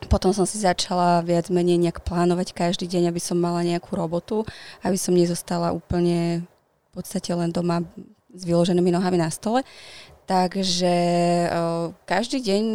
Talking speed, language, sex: 150 wpm, Slovak, female